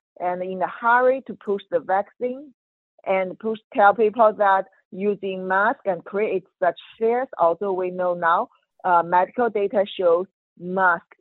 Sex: female